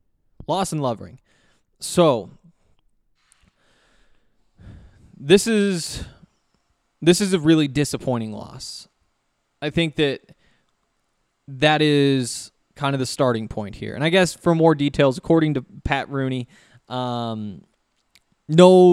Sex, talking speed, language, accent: male, 110 wpm, English, American